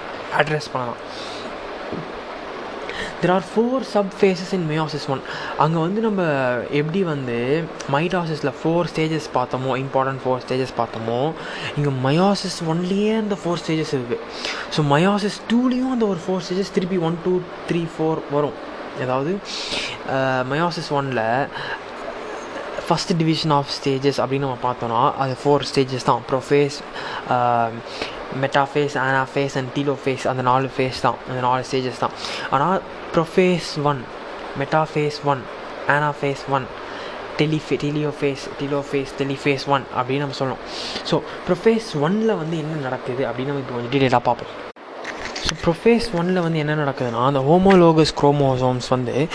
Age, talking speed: 20-39, 135 wpm